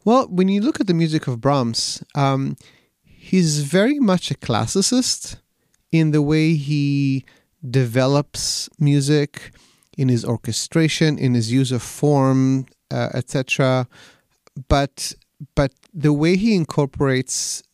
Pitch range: 125-155 Hz